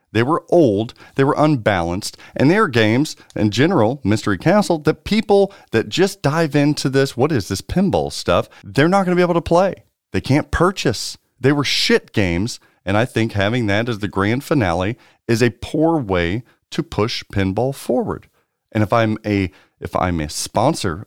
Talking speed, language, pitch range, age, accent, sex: 185 wpm, English, 100-150 Hz, 40-59, American, male